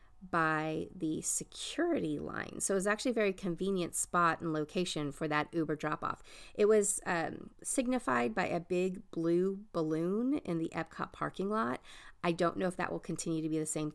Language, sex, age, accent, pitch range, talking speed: English, female, 30-49, American, 155-185 Hz, 190 wpm